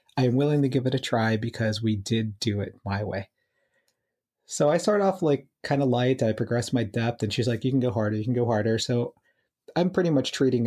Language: English